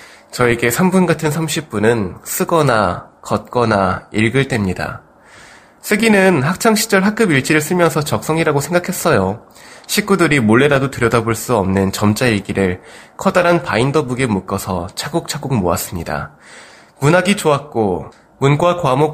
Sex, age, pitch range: male, 20-39, 105-160 Hz